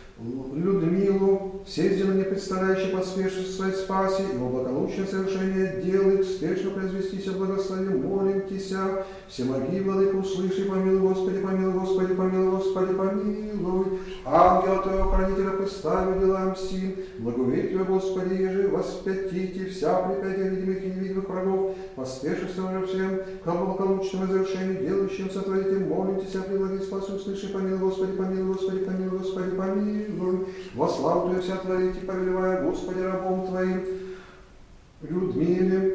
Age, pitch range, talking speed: 40-59, 180-190 Hz, 125 wpm